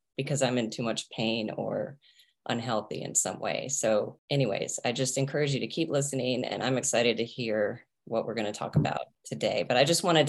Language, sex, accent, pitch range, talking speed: English, female, American, 120-150 Hz, 205 wpm